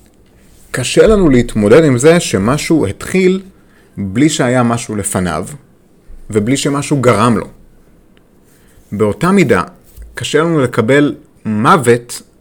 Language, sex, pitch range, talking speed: Hebrew, male, 105-155 Hz, 100 wpm